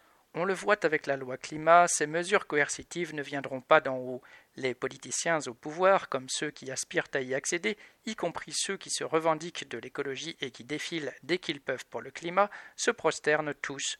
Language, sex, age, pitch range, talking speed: French, male, 50-69, 140-175 Hz, 195 wpm